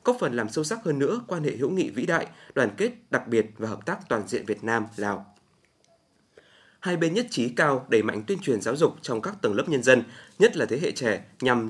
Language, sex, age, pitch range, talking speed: Vietnamese, male, 20-39, 110-155 Hz, 245 wpm